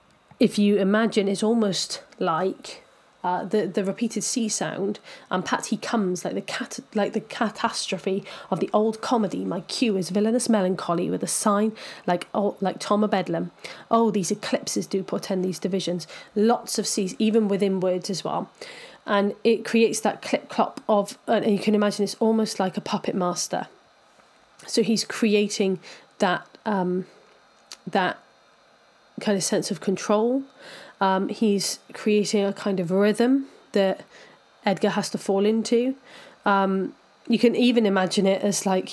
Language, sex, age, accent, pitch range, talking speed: English, female, 30-49, British, 195-225 Hz, 160 wpm